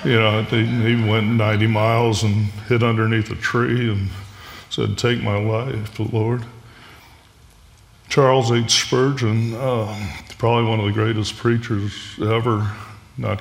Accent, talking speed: American, 130 wpm